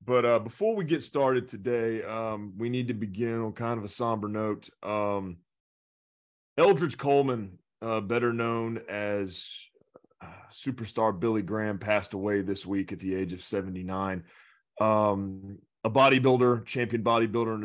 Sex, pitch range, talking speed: male, 100-115 Hz, 150 wpm